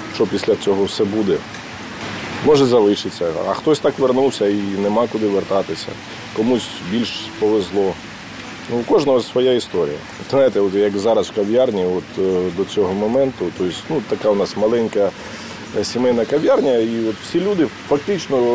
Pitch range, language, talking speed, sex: 105-130 Hz, Ukrainian, 155 wpm, male